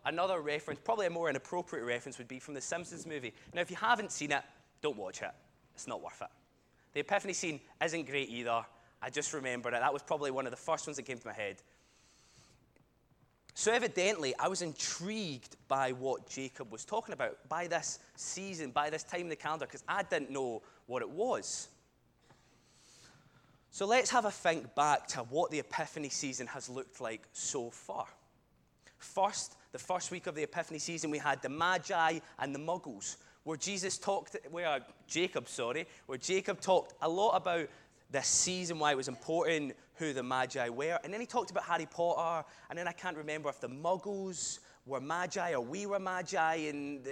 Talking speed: 190 wpm